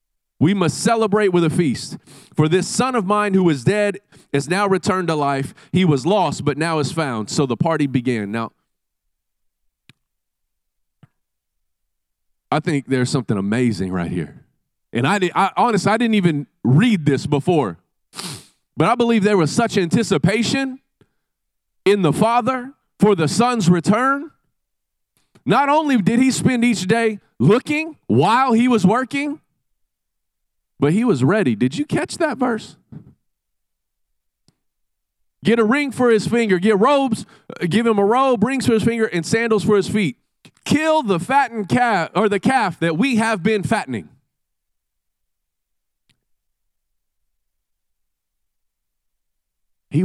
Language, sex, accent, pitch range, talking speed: English, male, American, 135-230 Hz, 140 wpm